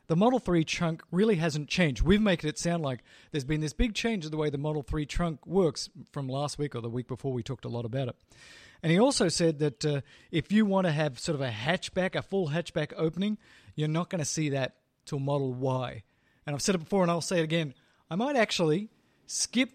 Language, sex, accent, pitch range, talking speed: English, male, Australian, 140-185 Hz, 245 wpm